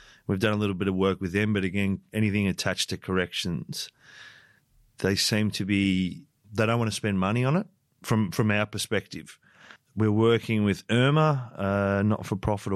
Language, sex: English, male